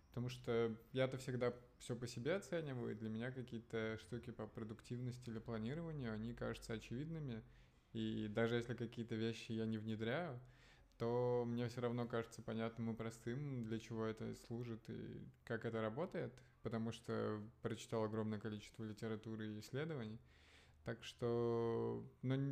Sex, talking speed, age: male, 145 wpm, 20-39